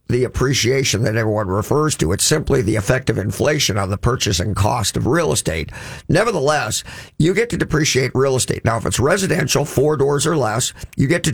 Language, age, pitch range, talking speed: English, 50-69, 120-160 Hz, 195 wpm